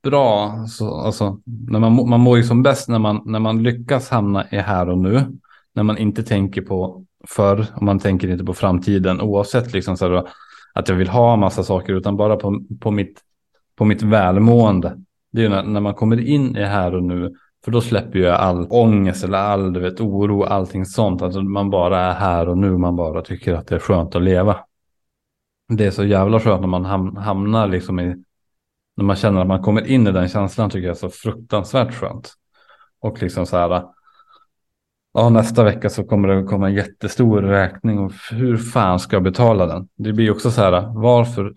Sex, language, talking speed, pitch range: male, Swedish, 205 wpm, 95-110 Hz